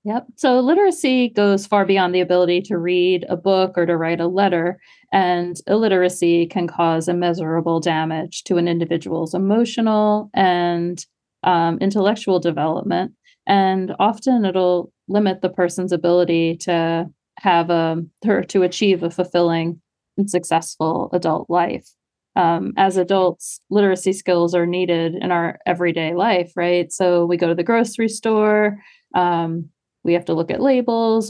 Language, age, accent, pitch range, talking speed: English, 30-49, American, 170-200 Hz, 140 wpm